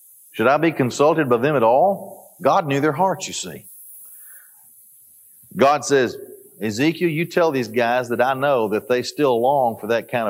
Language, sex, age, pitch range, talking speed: English, male, 40-59, 125-170 Hz, 180 wpm